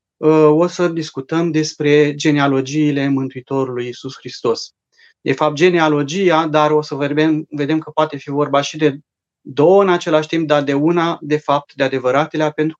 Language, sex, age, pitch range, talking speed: Romanian, male, 30-49, 135-160 Hz, 160 wpm